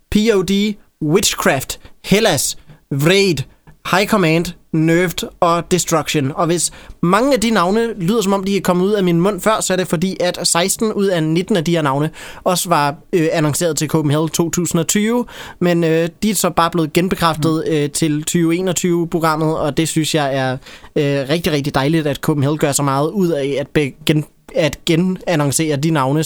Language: Danish